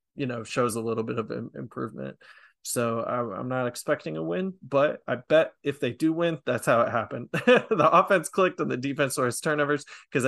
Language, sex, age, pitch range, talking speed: English, male, 20-39, 115-145 Hz, 205 wpm